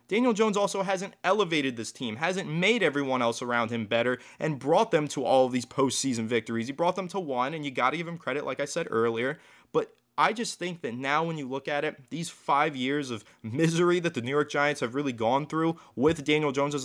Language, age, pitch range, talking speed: English, 20-39, 120-165 Hz, 240 wpm